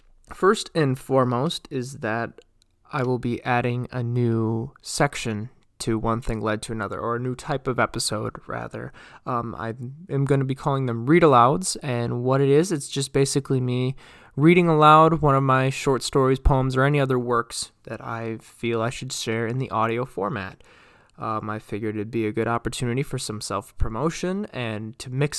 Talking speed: 180 wpm